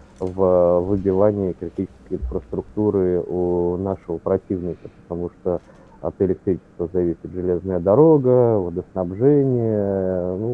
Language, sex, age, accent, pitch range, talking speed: Russian, male, 30-49, native, 90-100 Hz, 90 wpm